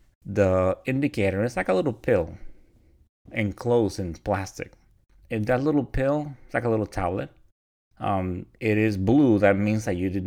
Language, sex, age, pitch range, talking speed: English, male, 30-49, 95-115 Hz, 165 wpm